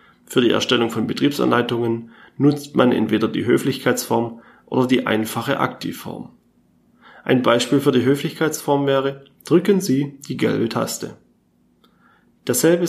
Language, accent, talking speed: German, German, 120 wpm